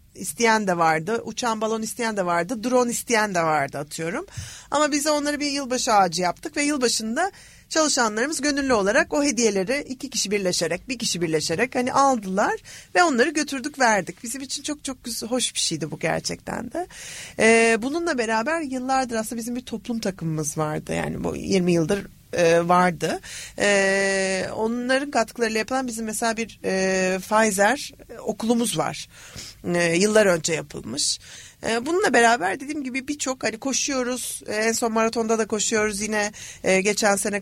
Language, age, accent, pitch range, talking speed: Turkish, 40-59, native, 180-245 Hz, 145 wpm